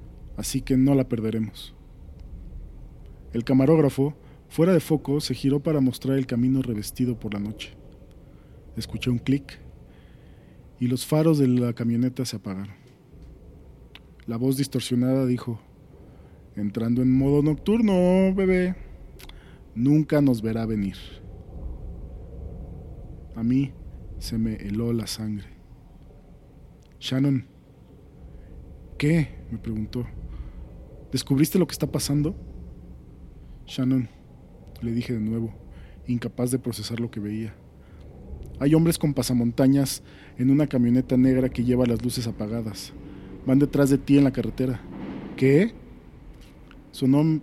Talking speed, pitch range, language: 120 wpm, 95-135 Hz, Spanish